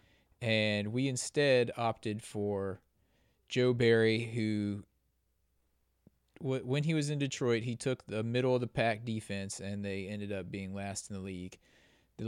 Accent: American